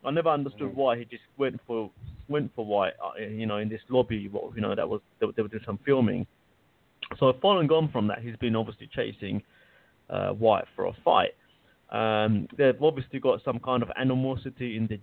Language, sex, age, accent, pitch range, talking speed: English, male, 30-49, British, 110-125 Hz, 195 wpm